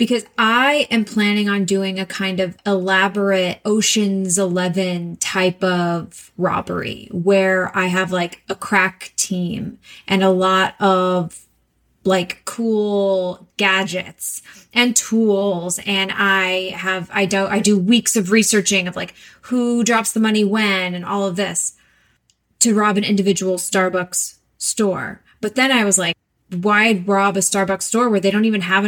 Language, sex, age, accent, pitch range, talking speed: English, female, 20-39, American, 185-210 Hz, 150 wpm